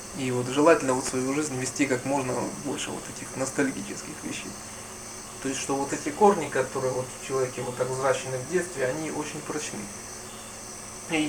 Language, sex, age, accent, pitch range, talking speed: Russian, male, 20-39, native, 130-155 Hz, 175 wpm